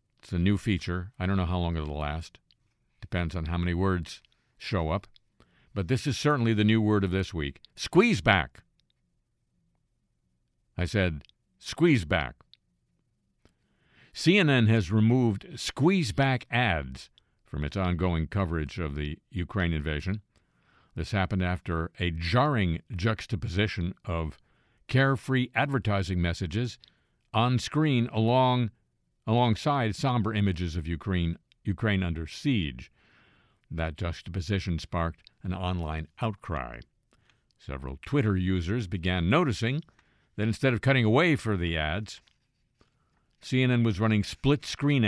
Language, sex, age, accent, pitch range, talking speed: English, male, 50-69, American, 85-115 Hz, 120 wpm